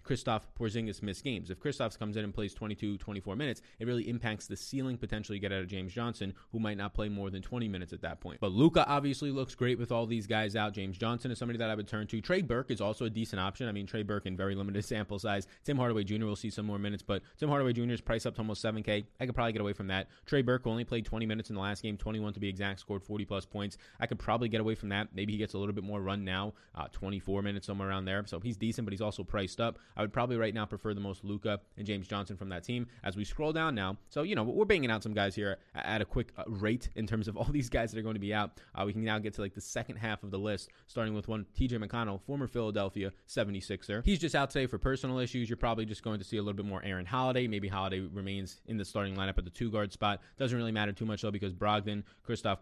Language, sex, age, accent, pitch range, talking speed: English, male, 20-39, American, 100-115 Hz, 285 wpm